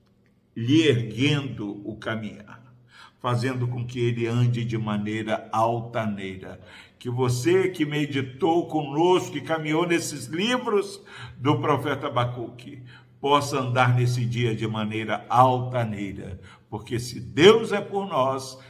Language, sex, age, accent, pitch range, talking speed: Portuguese, male, 60-79, Brazilian, 110-135 Hz, 120 wpm